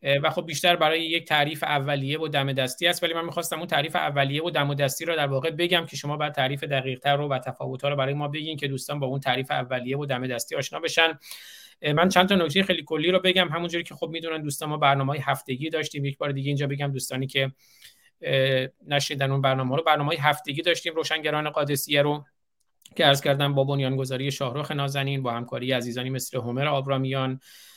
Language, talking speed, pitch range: Persian, 200 wpm, 135-160 Hz